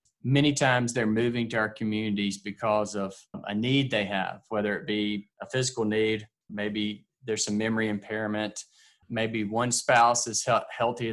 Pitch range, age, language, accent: 105-120 Hz, 20-39, English, American